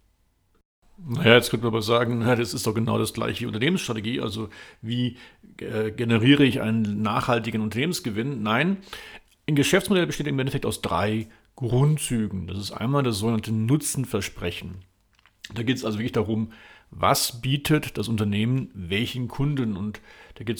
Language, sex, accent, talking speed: German, male, German, 150 wpm